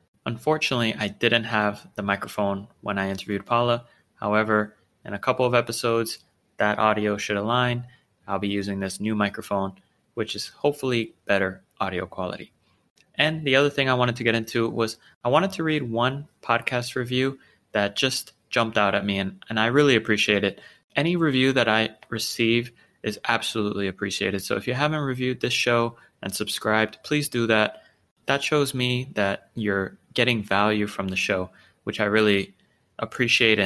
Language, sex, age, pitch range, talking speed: English, male, 20-39, 105-125 Hz, 170 wpm